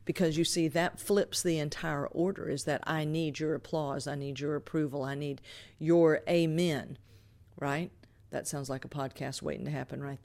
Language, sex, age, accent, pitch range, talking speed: English, female, 50-69, American, 120-160 Hz, 185 wpm